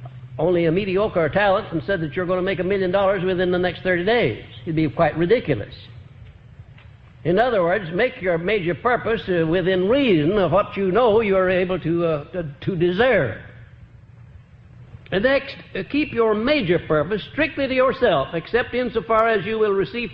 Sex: male